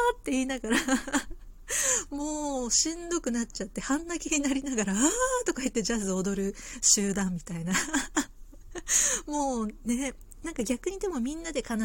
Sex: female